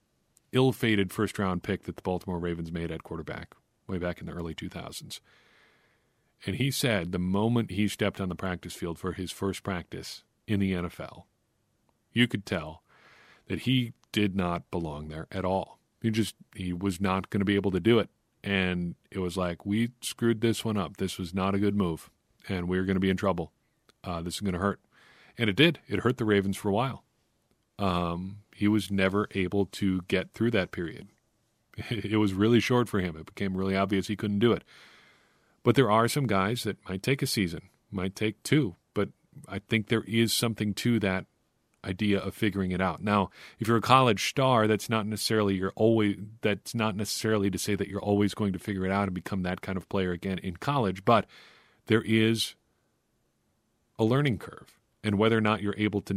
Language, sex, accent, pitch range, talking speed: English, male, American, 95-110 Hz, 205 wpm